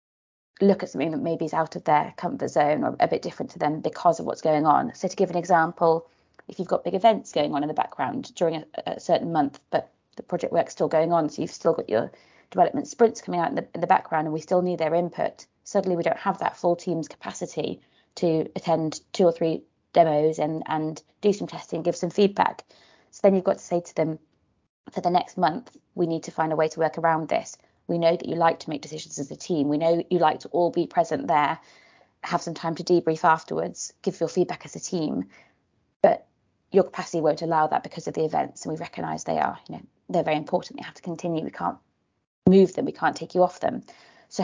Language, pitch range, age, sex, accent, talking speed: English, 155-180 Hz, 20-39, female, British, 240 wpm